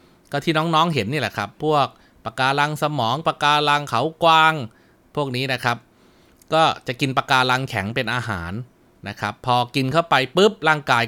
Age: 20-39